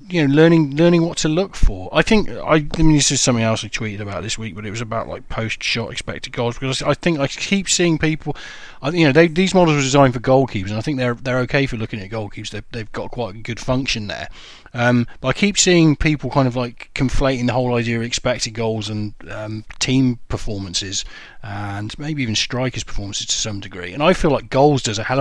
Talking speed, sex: 240 wpm, male